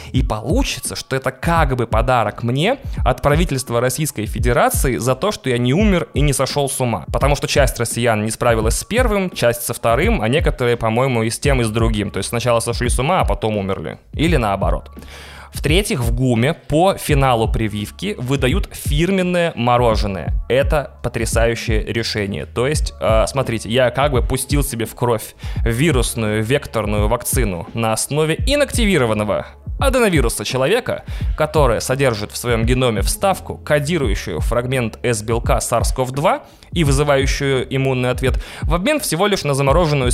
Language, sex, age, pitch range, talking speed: Russian, male, 20-39, 115-140 Hz, 155 wpm